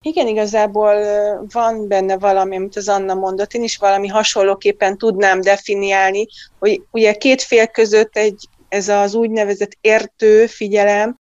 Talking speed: 135 wpm